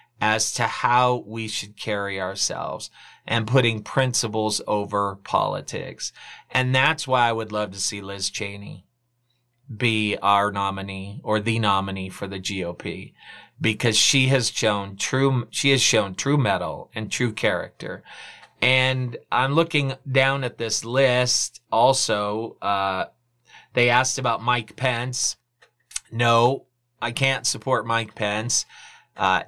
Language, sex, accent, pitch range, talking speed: English, male, American, 105-125 Hz, 130 wpm